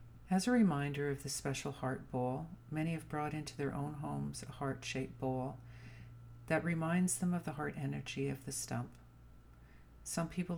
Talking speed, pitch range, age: 170 wpm, 120-150 Hz, 50-69